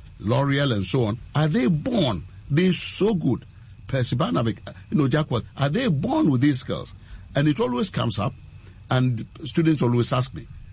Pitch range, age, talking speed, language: 105-160 Hz, 50-69, 170 wpm, English